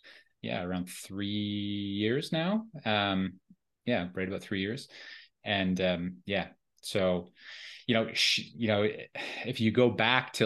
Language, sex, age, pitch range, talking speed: English, male, 20-39, 95-115 Hz, 140 wpm